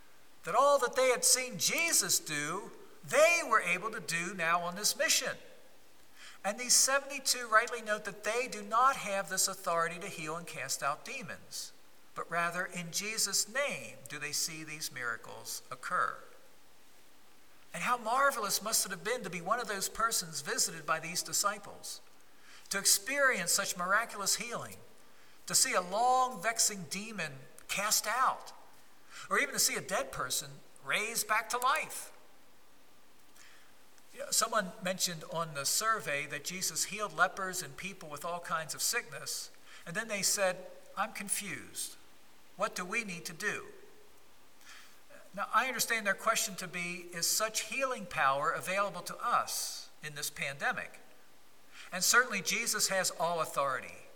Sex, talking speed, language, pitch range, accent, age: male, 155 wpm, English, 175-225 Hz, American, 50-69